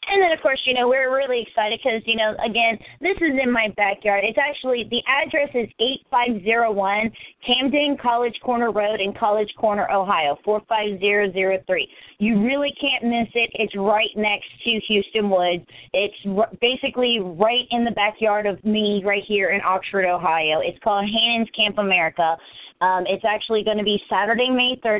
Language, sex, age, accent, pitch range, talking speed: English, female, 30-49, American, 200-240 Hz, 170 wpm